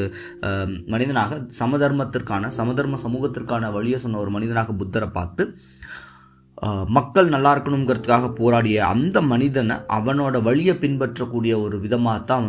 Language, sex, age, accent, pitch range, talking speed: Tamil, male, 20-39, native, 95-125 Hz, 100 wpm